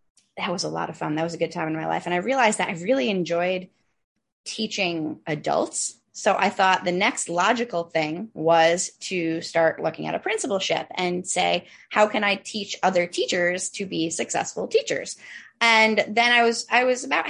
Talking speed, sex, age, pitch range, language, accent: 195 wpm, female, 10-29, 175-220 Hz, English, American